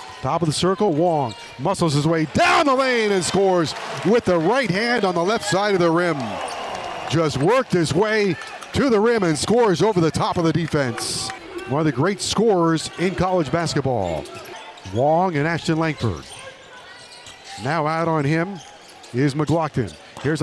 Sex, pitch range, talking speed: male, 150-200 Hz, 170 wpm